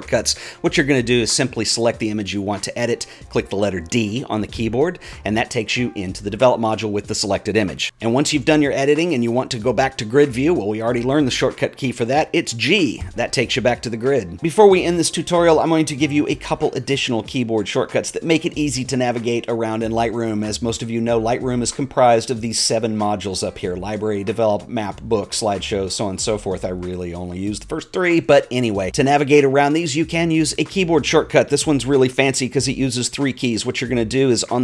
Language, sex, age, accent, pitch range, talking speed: English, male, 40-59, American, 105-145 Hz, 260 wpm